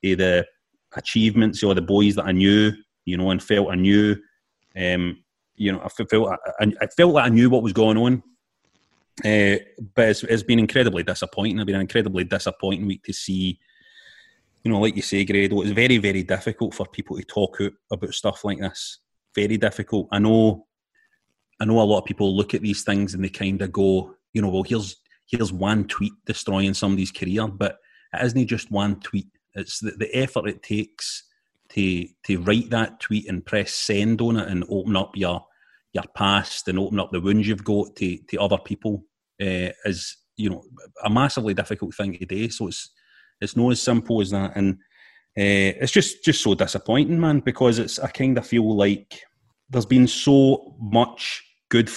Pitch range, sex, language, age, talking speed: 100-115 Hz, male, English, 30-49, 195 wpm